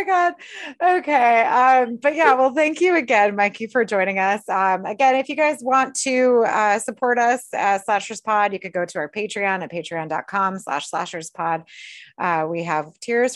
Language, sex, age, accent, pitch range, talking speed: English, female, 30-49, American, 175-230 Hz, 185 wpm